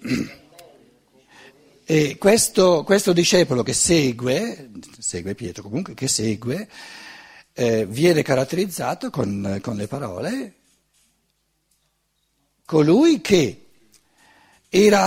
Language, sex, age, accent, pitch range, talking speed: Italian, male, 60-79, native, 110-160 Hz, 85 wpm